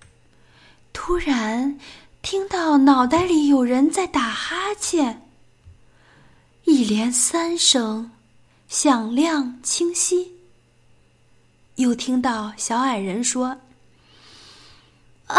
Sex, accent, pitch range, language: female, native, 225-315 Hz, Chinese